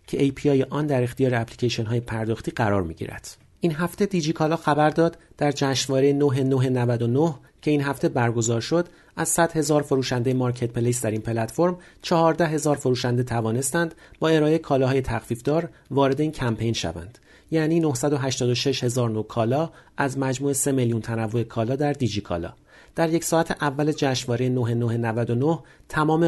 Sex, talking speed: male, 145 wpm